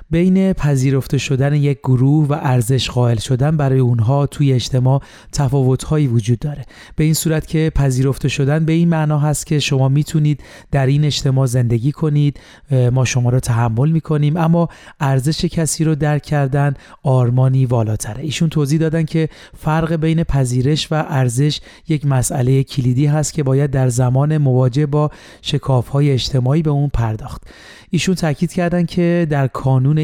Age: 30-49